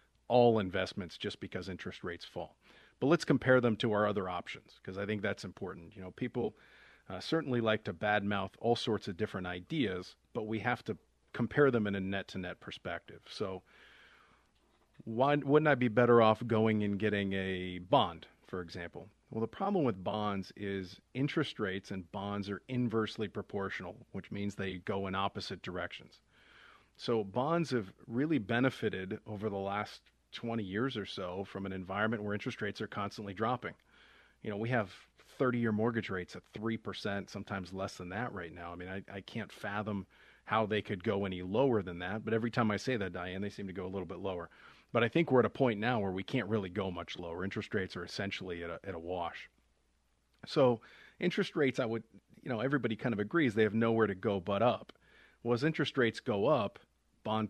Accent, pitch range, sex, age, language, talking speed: American, 95-115 Hz, male, 40-59, English, 200 wpm